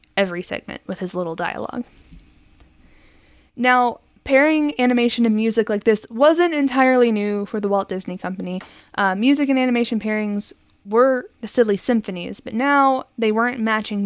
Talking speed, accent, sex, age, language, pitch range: 145 wpm, American, female, 20-39, English, 195-245 Hz